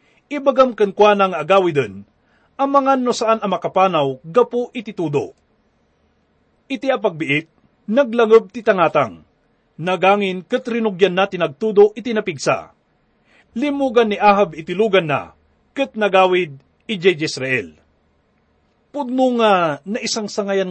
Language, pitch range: English, 185-240 Hz